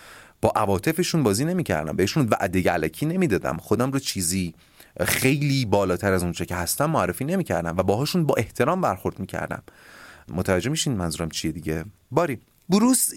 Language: Persian